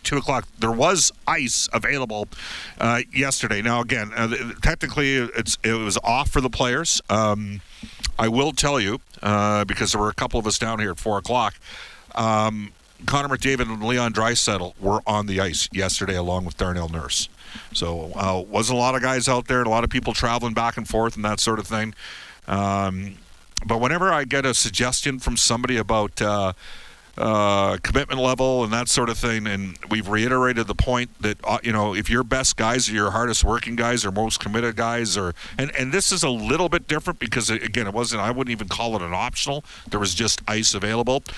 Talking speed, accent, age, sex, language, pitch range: 205 wpm, American, 50-69, male, English, 100-125 Hz